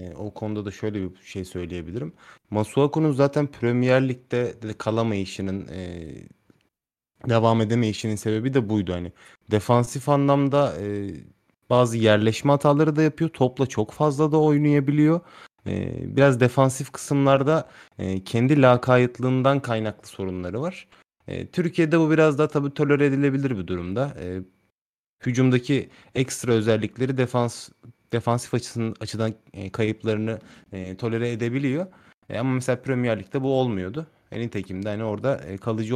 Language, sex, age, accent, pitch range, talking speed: Turkish, male, 30-49, native, 100-140 Hz, 120 wpm